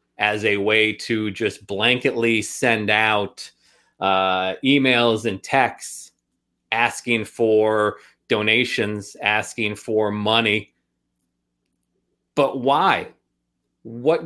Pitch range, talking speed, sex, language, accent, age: 95-125 Hz, 90 wpm, male, English, American, 30-49